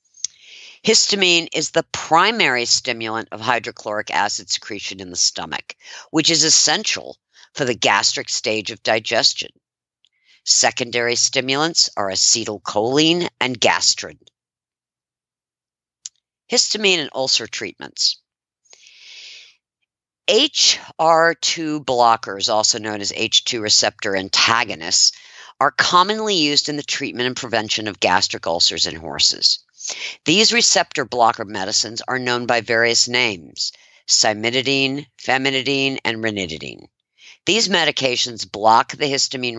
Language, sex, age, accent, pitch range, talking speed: English, female, 50-69, American, 105-160 Hz, 105 wpm